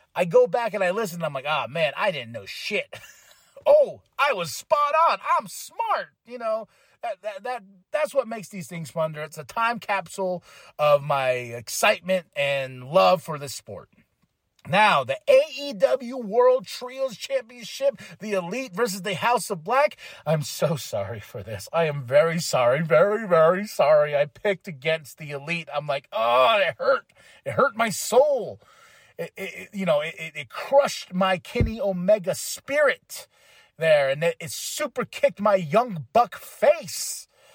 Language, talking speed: English, 165 wpm